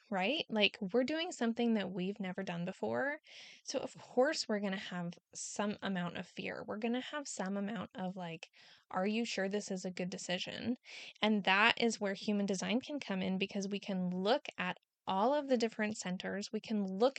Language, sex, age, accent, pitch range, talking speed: English, female, 10-29, American, 190-235 Hz, 205 wpm